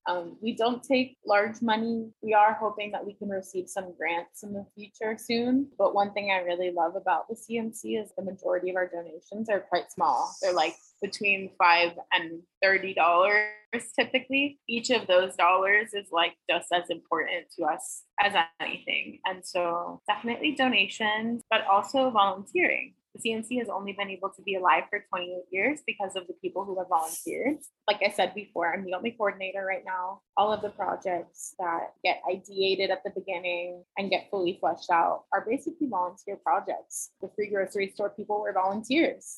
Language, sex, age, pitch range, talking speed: English, female, 20-39, 180-215 Hz, 180 wpm